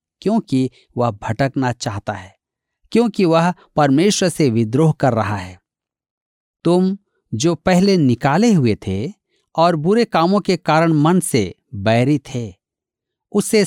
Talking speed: 125 wpm